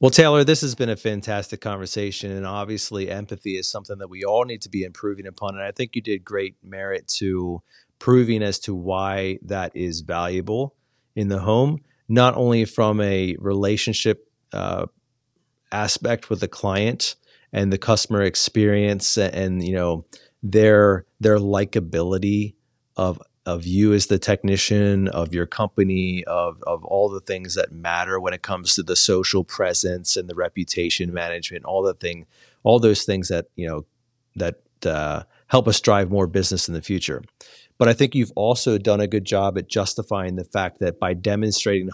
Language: English